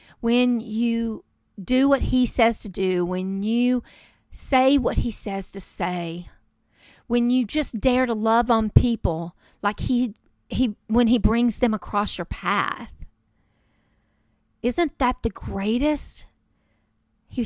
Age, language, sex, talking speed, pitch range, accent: 40-59, English, female, 135 wpm, 200-260 Hz, American